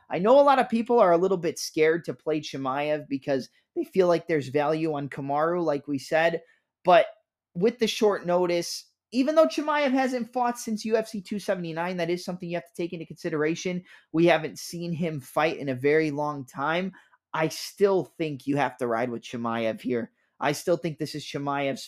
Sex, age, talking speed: male, 20-39, 200 wpm